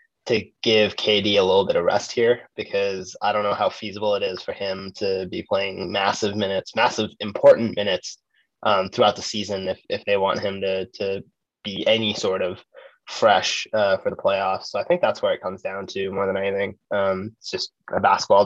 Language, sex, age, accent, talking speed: English, male, 20-39, American, 210 wpm